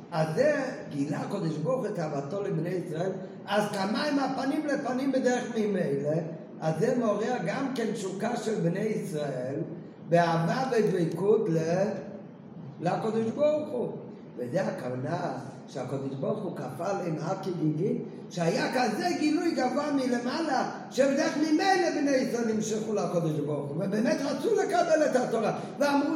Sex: male